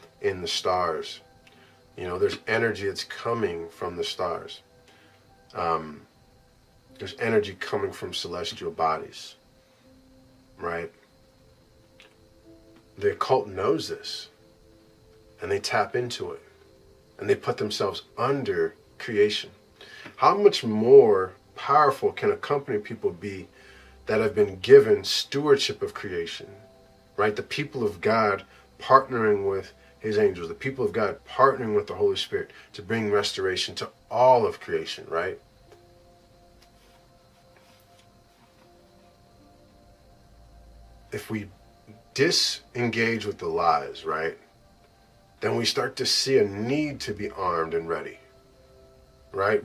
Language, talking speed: English, 115 wpm